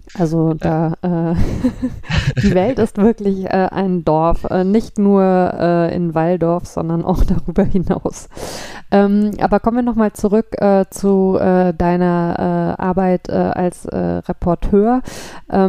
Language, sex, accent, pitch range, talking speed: German, female, German, 180-215 Hz, 140 wpm